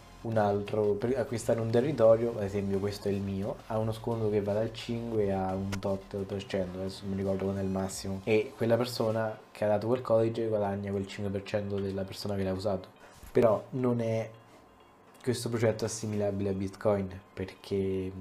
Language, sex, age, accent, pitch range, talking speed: Italian, male, 20-39, native, 100-110 Hz, 180 wpm